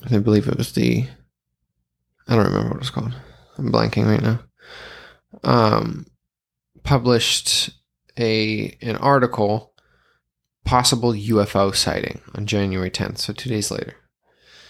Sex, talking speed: male, 125 wpm